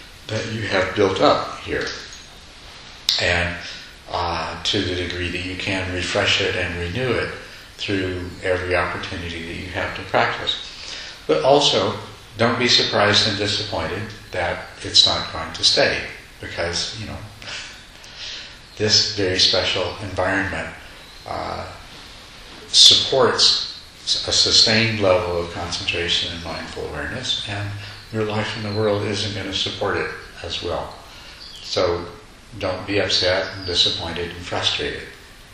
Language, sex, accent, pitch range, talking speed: English, male, American, 90-105 Hz, 130 wpm